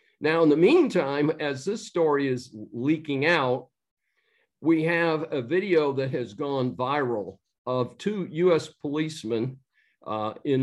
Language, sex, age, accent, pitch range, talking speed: English, male, 50-69, American, 120-145 Hz, 135 wpm